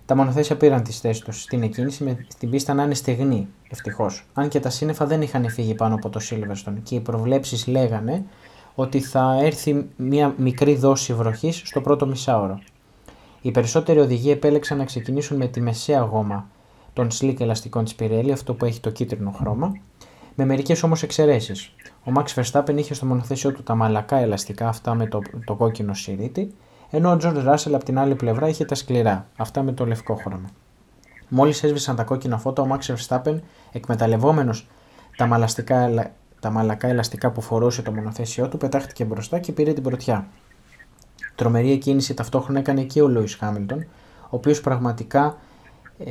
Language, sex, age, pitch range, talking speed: Greek, male, 20-39, 115-140 Hz, 170 wpm